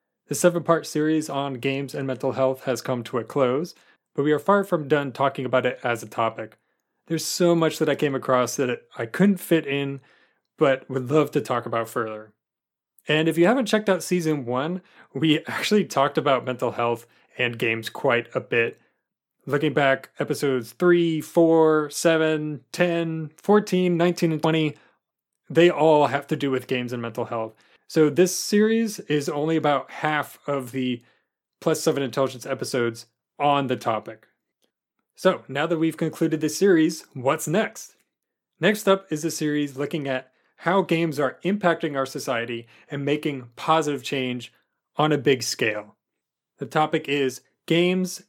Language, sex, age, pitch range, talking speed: English, male, 30-49, 130-165 Hz, 170 wpm